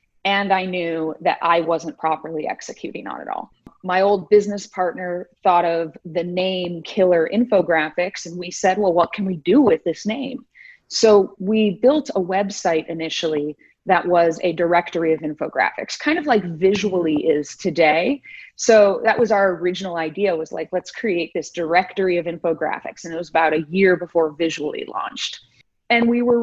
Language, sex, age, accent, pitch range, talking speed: English, female, 30-49, American, 165-210 Hz, 175 wpm